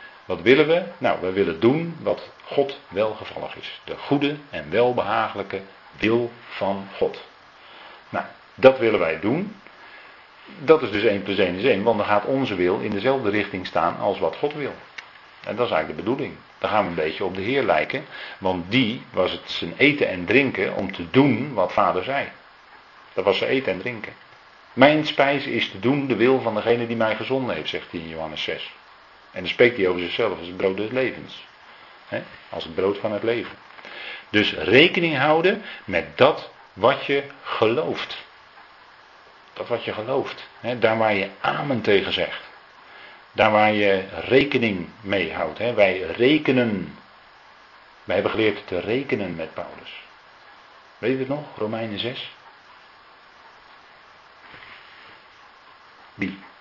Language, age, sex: Dutch, 40-59, male